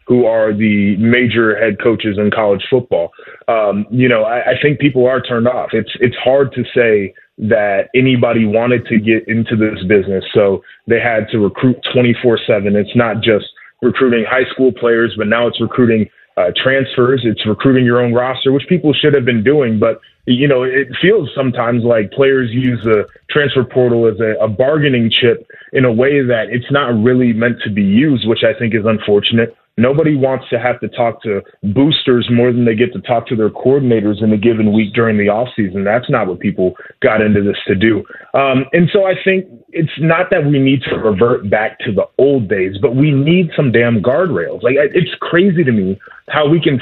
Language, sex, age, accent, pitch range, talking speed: English, male, 20-39, American, 110-135 Hz, 205 wpm